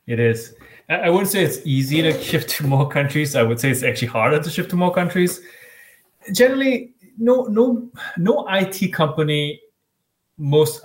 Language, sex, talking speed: English, male, 165 wpm